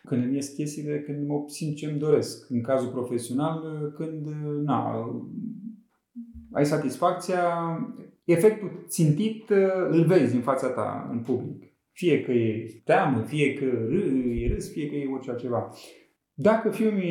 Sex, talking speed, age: male, 140 wpm, 30-49